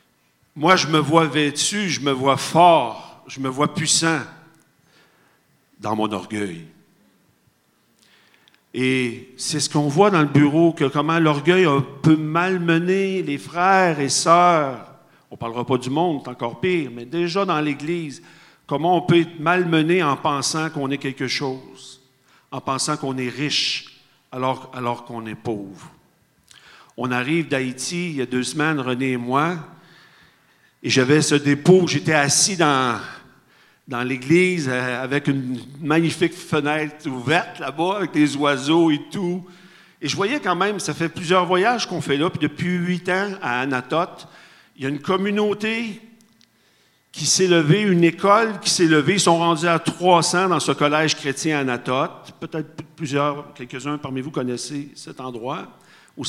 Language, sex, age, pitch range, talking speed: French, male, 50-69, 135-175 Hz, 160 wpm